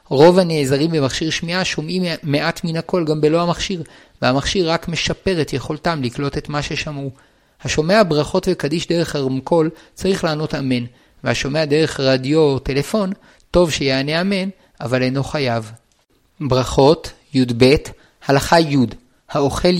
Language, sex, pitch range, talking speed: Hebrew, male, 130-170 Hz, 135 wpm